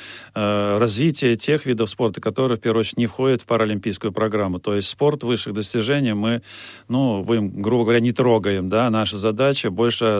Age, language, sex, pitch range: 40-59, Russian, male, 105-130 Hz